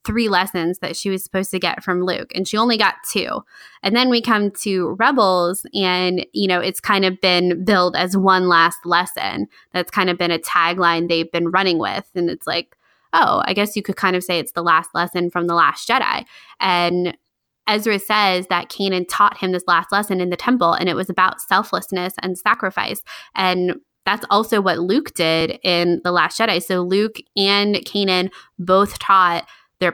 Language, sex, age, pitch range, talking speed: English, female, 20-39, 175-200 Hz, 200 wpm